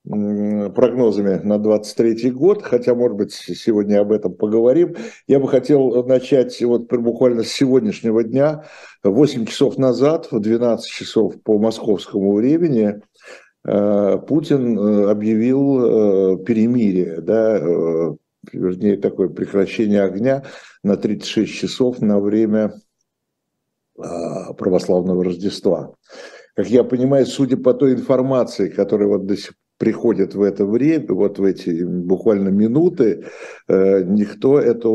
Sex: male